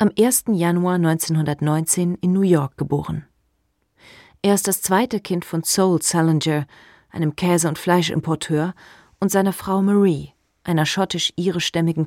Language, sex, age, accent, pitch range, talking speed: German, female, 40-59, German, 160-190 Hz, 130 wpm